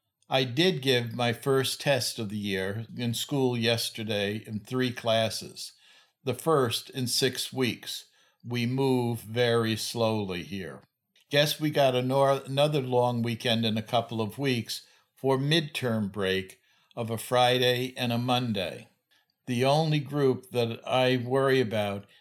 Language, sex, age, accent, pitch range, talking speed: English, male, 60-79, American, 110-130 Hz, 140 wpm